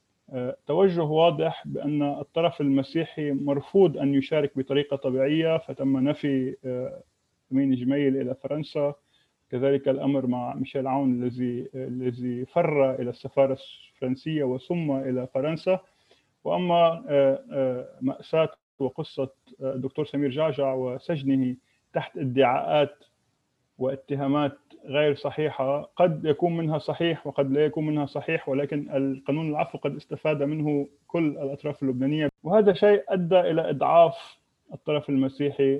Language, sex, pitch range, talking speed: English, male, 135-155 Hz, 110 wpm